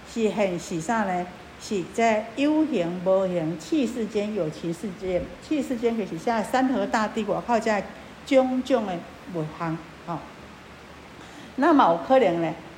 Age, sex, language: 50-69, female, Chinese